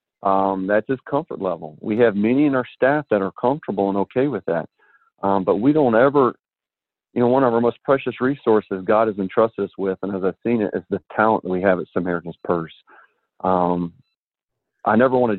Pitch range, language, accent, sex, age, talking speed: 95-115 Hz, English, American, male, 40-59, 215 wpm